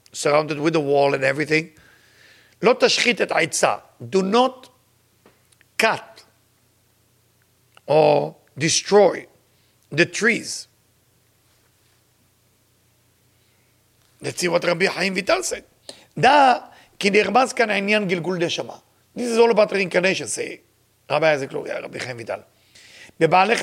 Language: English